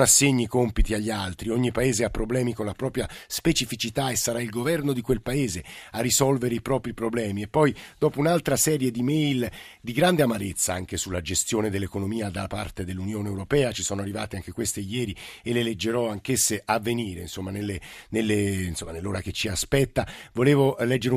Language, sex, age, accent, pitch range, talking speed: Italian, male, 50-69, native, 100-125 Hz, 175 wpm